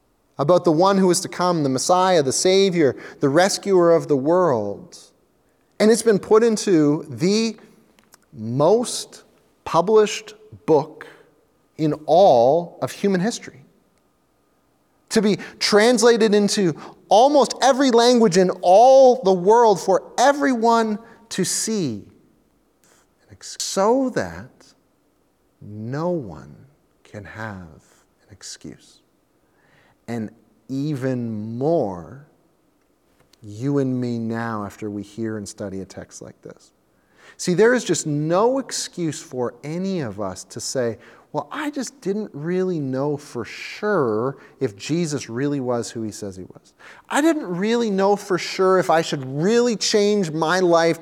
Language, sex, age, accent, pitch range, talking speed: English, male, 30-49, American, 145-225 Hz, 130 wpm